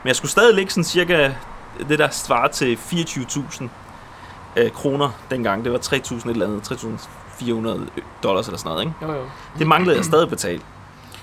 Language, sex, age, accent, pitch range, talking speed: Danish, male, 30-49, native, 130-180 Hz, 160 wpm